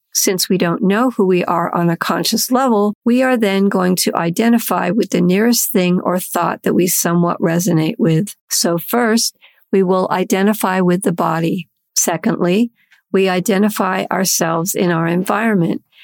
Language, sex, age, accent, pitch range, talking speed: English, female, 50-69, American, 175-225 Hz, 160 wpm